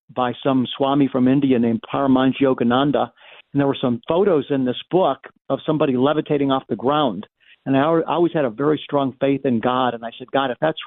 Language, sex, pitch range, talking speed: English, male, 125-150 Hz, 210 wpm